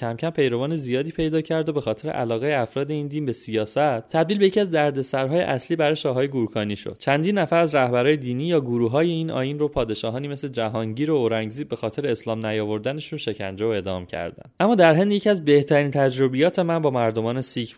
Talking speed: 200 wpm